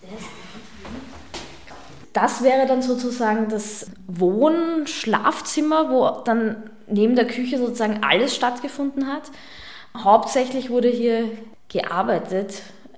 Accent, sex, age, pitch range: German, female, 20-39, 210-250 Hz